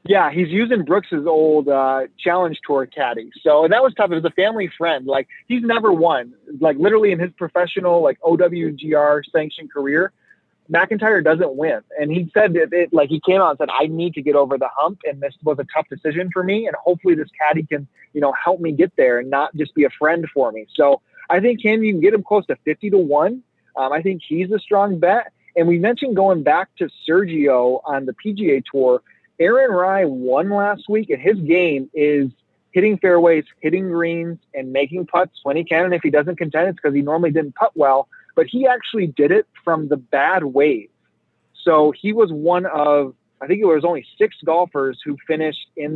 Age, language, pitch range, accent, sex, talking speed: 30-49, English, 150-195 Hz, American, male, 215 wpm